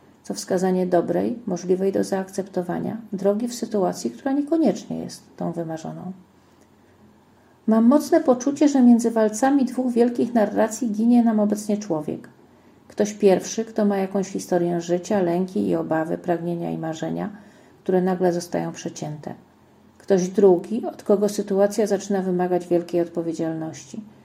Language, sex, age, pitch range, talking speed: Polish, female, 40-59, 180-225 Hz, 130 wpm